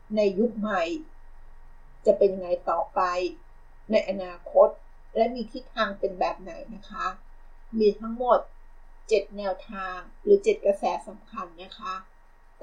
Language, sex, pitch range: Thai, female, 200-275 Hz